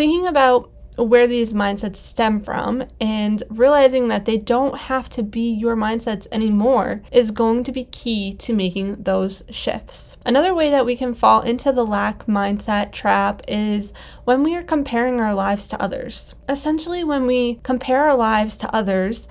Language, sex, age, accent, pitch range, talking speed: English, female, 10-29, American, 215-260 Hz, 170 wpm